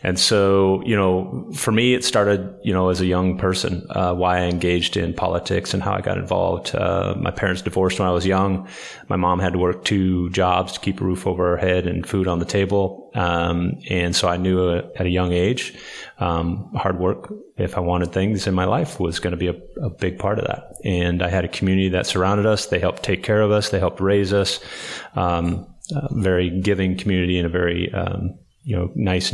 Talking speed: 230 wpm